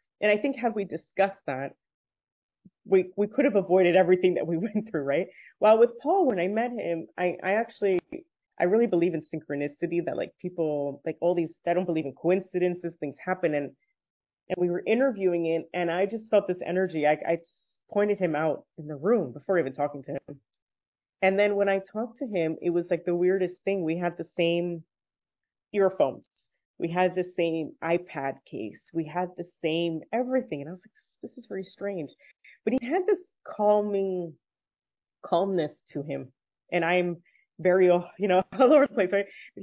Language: English